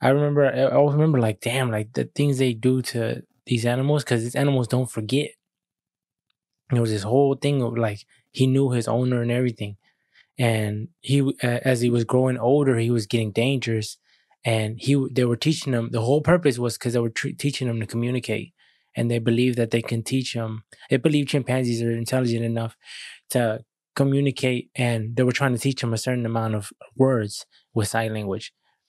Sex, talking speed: male, 190 wpm